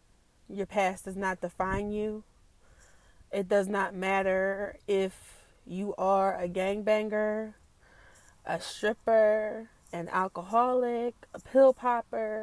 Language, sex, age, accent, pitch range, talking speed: English, female, 20-39, American, 185-210 Hz, 105 wpm